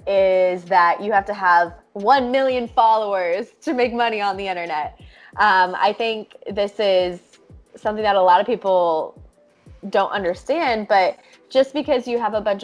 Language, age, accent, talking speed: English, 20-39, American, 165 wpm